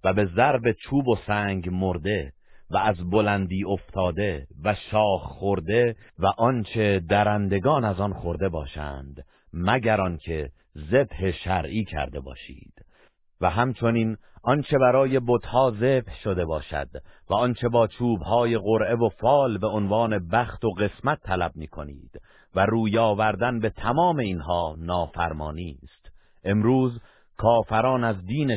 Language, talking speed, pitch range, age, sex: Persian, 130 wpm, 85-115 Hz, 50-69, male